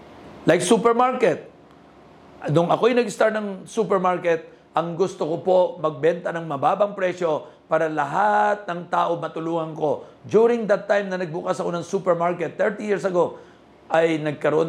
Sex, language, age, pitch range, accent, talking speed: male, Filipino, 50-69, 160-215 Hz, native, 140 wpm